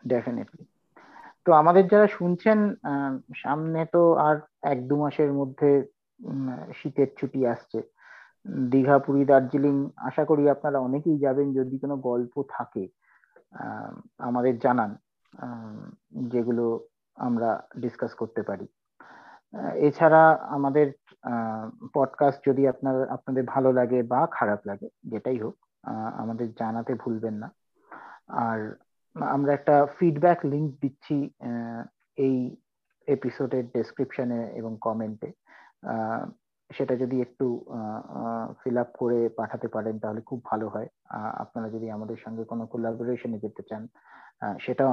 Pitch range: 115-140 Hz